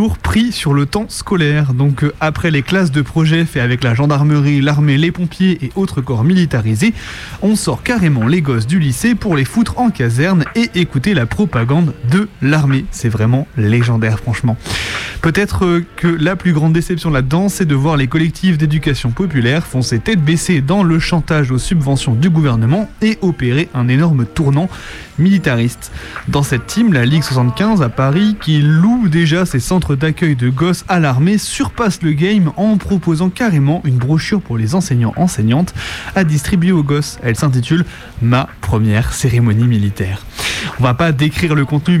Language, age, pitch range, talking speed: French, 30-49, 125-175 Hz, 175 wpm